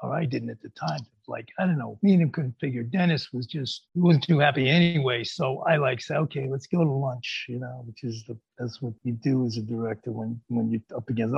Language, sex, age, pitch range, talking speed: English, male, 50-69, 120-170 Hz, 265 wpm